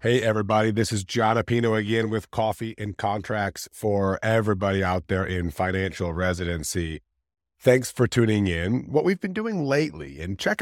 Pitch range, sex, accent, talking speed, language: 95-125 Hz, male, American, 165 wpm, English